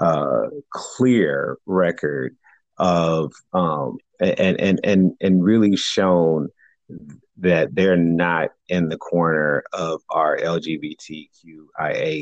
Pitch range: 85-120 Hz